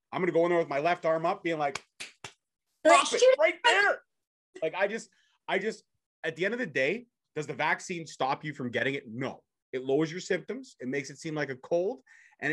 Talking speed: 225 wpm